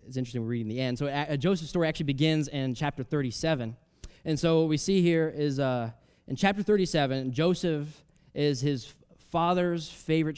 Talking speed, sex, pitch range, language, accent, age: 175 wpm, male, 115-155 Hz, English, American, 20-39